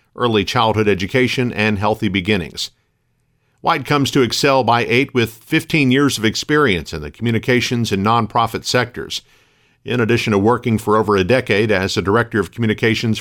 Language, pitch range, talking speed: English, 105-135 Hz, 165 wpm